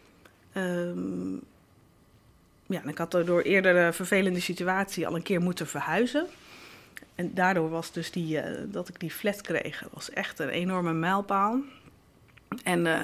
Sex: female